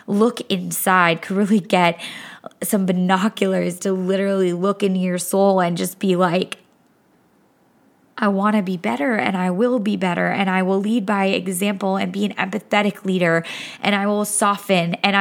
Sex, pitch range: female, 190-235 Hz